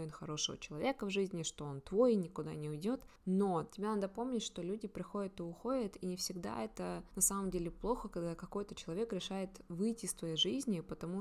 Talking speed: 195 wpm